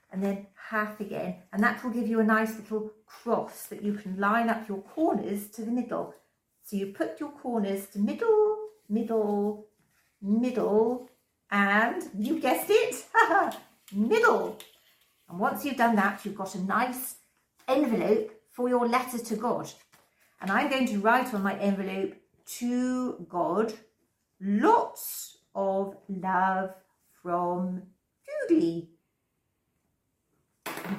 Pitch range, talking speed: 200-275 Hz, 130 wpm